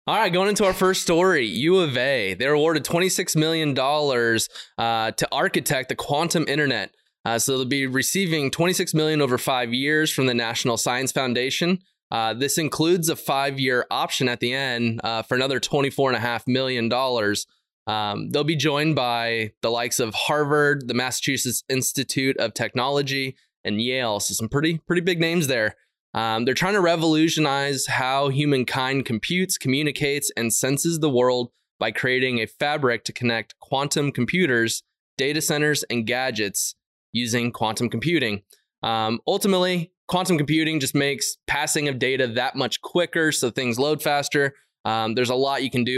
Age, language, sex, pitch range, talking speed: 20-39, English, male, 120-150 Hz, 160 wpm